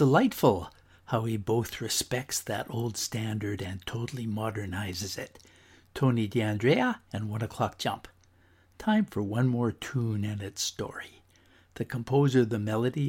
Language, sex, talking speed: English, male, 140 wpm